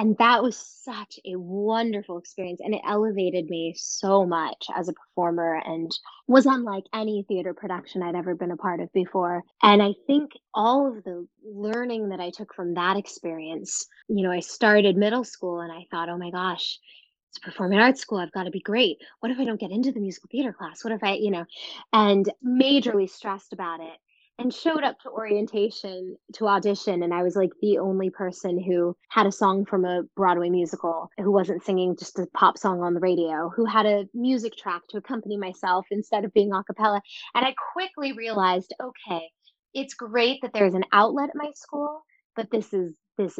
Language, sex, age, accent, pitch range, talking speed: English, female, 20-39, American, 180-230 Hz, 200 wpm